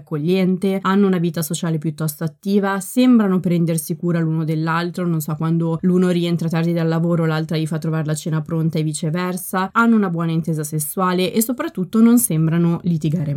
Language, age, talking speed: Italian, 20-39, 170 wpm